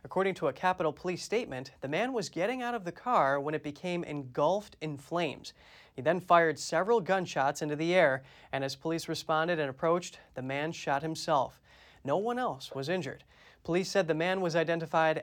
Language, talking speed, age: English, 195 wpm, 30-49